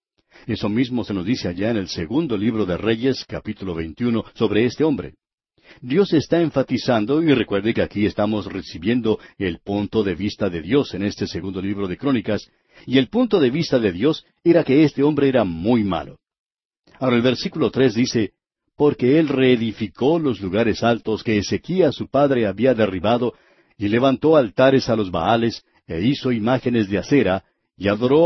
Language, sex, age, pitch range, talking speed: Spanish, male, 60-79, 100-140 Hz, 175 wpm